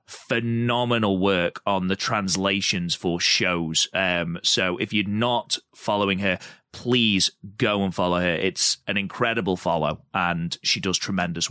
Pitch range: 95-120 Hz